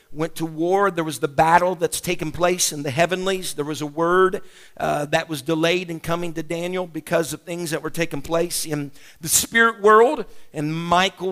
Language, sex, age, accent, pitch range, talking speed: English, male, 50-69, American, 155-190 Hz, 200 wpm